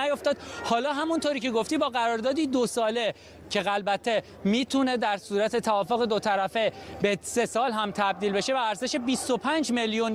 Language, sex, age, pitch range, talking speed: Persian, male, 30-49, 220-260 Hz, 160 wpm